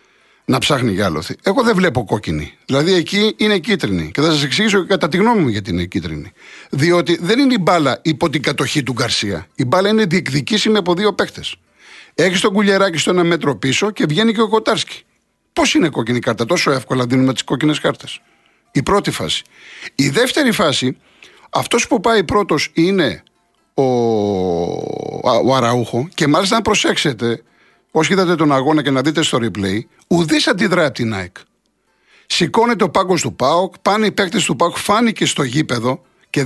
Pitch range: 130-200 Hz